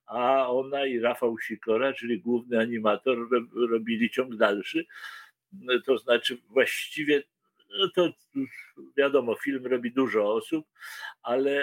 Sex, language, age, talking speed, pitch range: male, Polish, 50-69, 115 wpm, 105-140 Hz